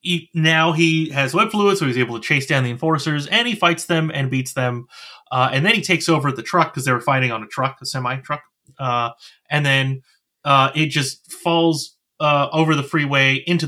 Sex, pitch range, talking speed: male, 130-160 Hz, 210 wpm